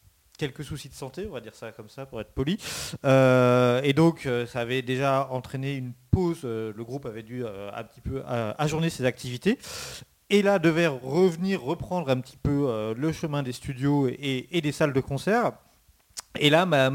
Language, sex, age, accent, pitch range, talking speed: French, male, 40-59, French, 115-155 Hz, 190 wpm